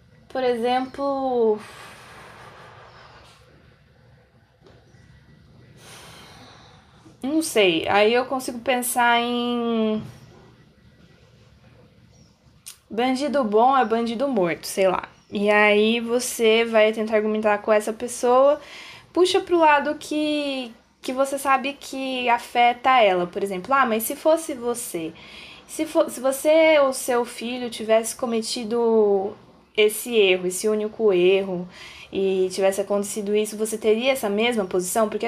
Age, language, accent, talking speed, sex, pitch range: 10-29, Portuguese, Brazilian, 110 wpm, female, 205-255 Hz